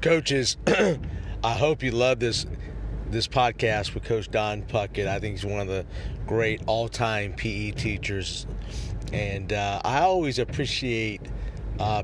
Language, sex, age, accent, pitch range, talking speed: English, male, 50-69, American, 105-130 Hz, 140 wpm